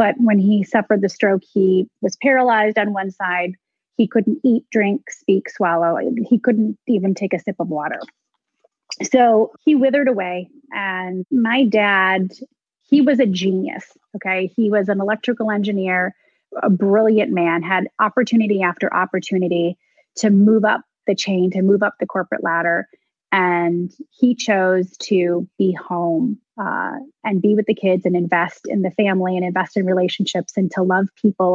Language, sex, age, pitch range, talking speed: English, female, 30-49, 185-215 Hz, 165 wpm